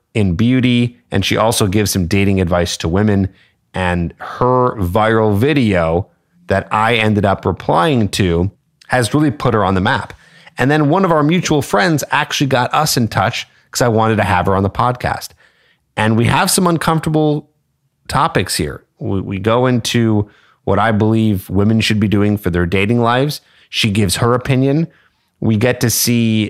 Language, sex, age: English, male, 30-49